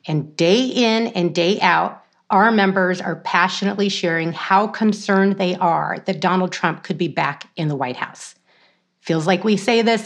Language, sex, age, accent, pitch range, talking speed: English, female, 30-49, American, 175-200 Hz, 180 wpm